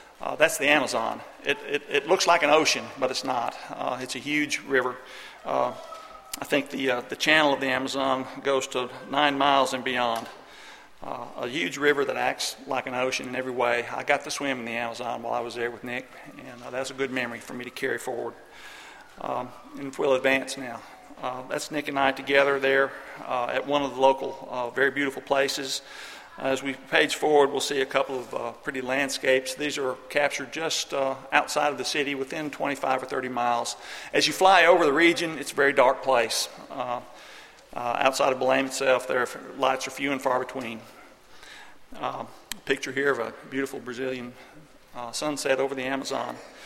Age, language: 50-69, English